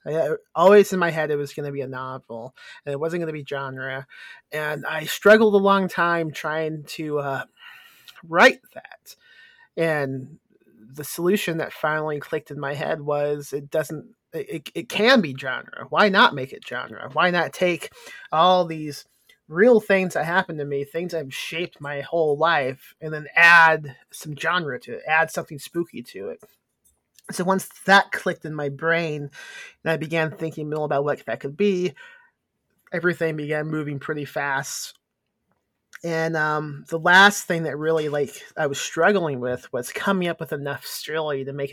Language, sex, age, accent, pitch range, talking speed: English, male, 30-49, American, 145-185 Hz, 175 wpm